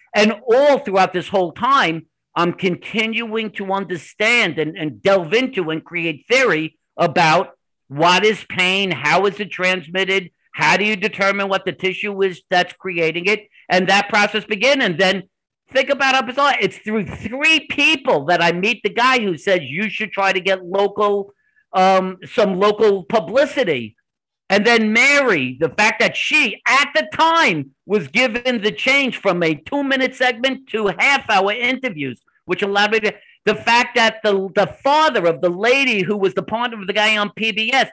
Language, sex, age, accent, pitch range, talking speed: English, male, 50-69, American, 190-240 Hz, 175 wpm